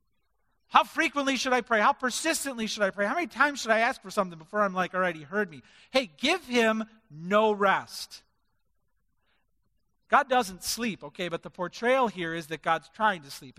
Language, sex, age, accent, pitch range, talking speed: English, male, 40-59, American, 185-305 Hz, 200 wpm